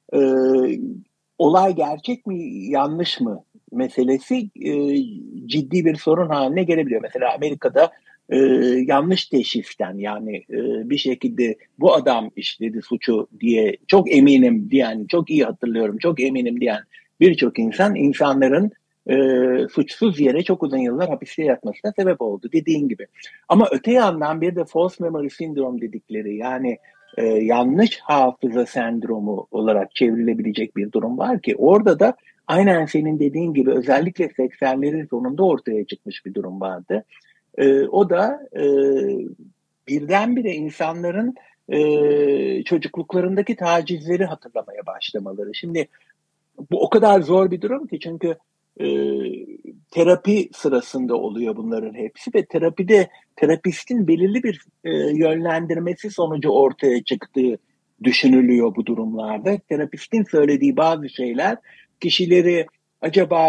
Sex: male